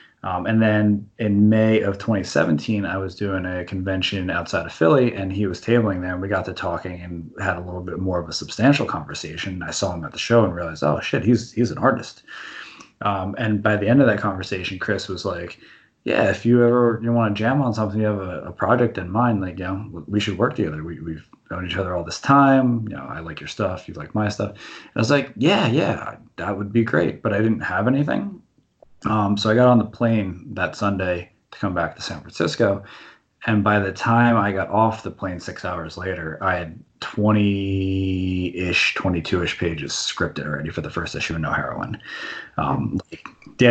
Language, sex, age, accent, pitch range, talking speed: English, male, 20-39, American, 90-110 Hz, 220 wpm